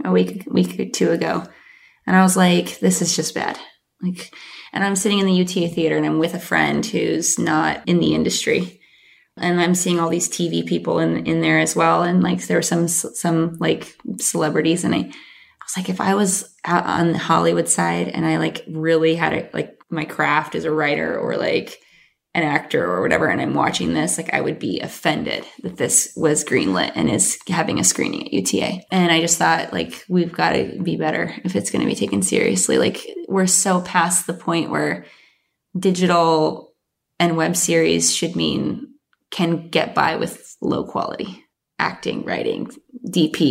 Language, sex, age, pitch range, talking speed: English, female, 20-39, 160-185 Hz, 195 wpm